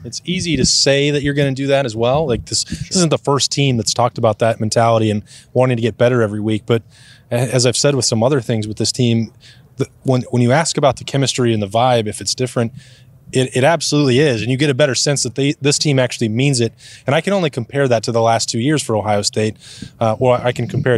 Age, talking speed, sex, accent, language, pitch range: 20-39, 265 wpm, male, American, English, 115-135 Hz